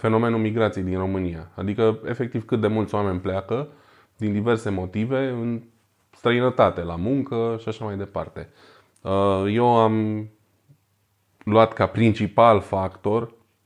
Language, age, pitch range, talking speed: Romanian, 20-39, 95-110 Hz, 125 wpm